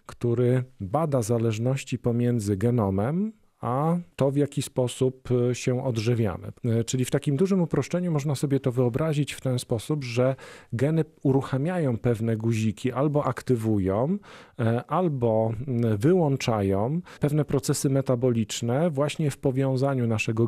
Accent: native